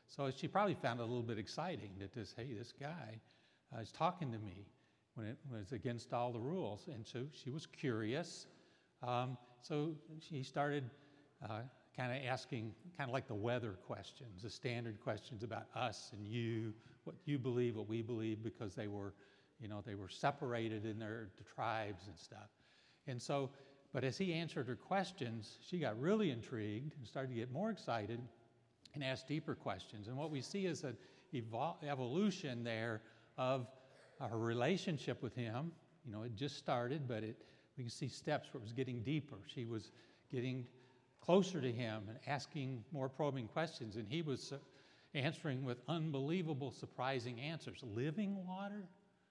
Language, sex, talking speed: English, male, 175 wpm